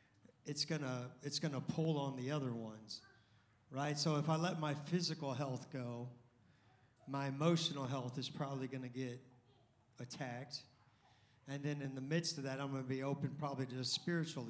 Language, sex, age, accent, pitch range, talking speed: English, male, 40-59, American, 130-150 Hz, 185 wpm